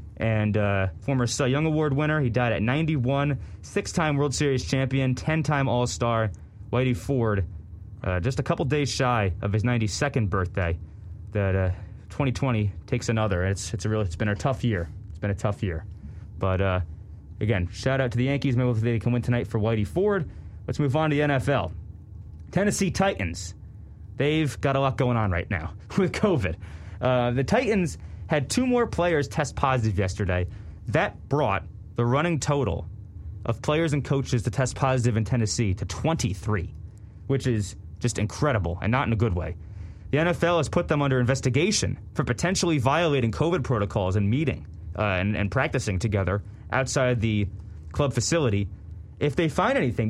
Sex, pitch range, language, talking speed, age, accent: male, 100-145 Hz, English, 175 wpm, 20-39, American